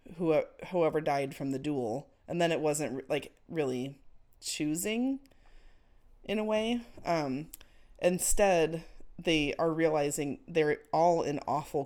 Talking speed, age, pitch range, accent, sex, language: 125 wpm, 30-49, 130-165 Hz, American, female, English